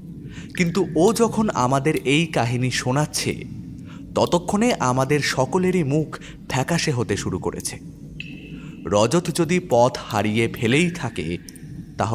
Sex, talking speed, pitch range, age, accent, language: male, 85 wpm, 120-155 Hz, 30-49, native, Bengali